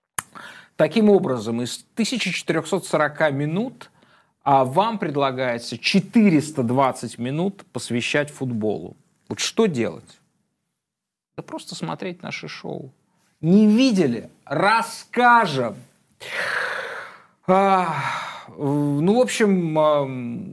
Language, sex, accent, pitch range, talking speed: Russian, male, native, 125-185 Hz, 75 wpm